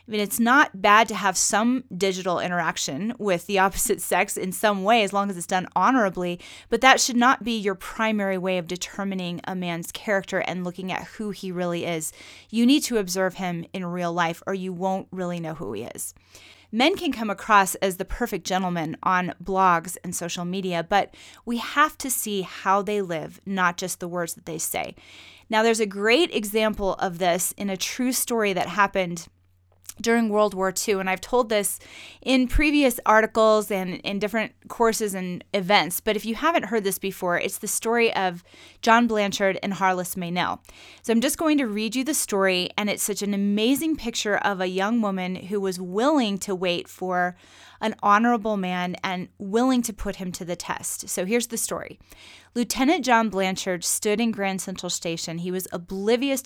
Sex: female